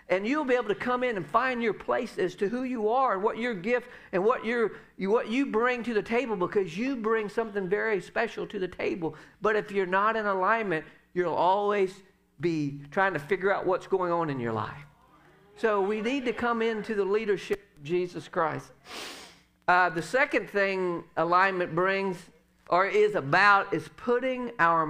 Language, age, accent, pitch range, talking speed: English, 50-69, American, 155-225 Hz, 195 wpm